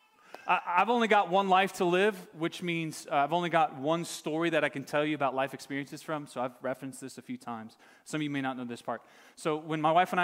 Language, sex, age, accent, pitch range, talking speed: English, male, 30-49, American, 130-170 Hz, 250 wpm